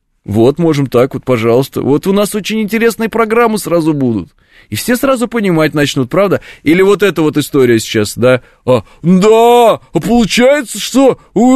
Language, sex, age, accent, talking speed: Russian, male, 30-49, native, 165 wpm